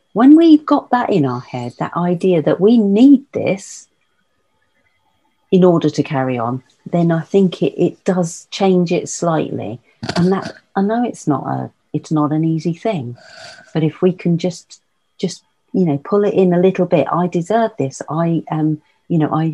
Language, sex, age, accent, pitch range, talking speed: English, female, 40-59, British, 140-175 Hz, 185 wpm